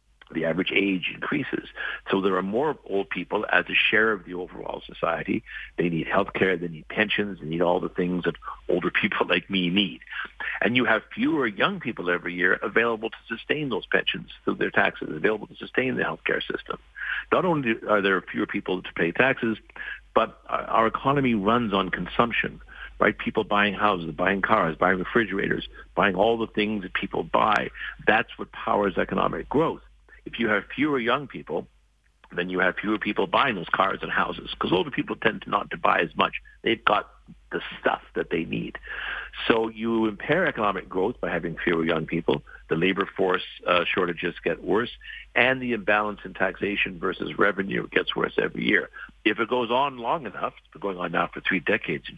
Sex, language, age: male, English, 50-69